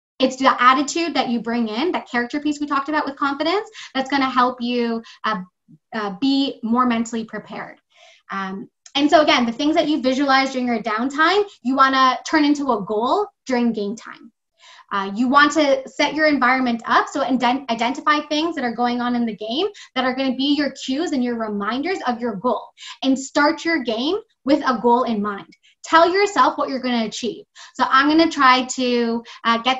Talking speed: 210 wpm